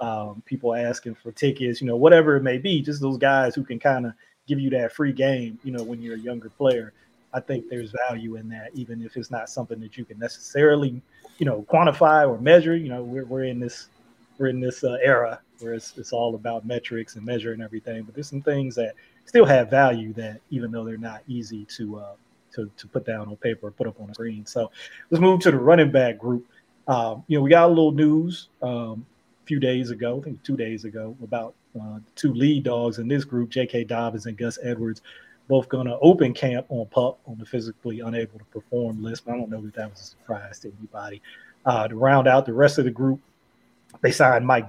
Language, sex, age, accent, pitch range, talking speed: English, male, 30-49, American, 115-135 Hz, 235 wpm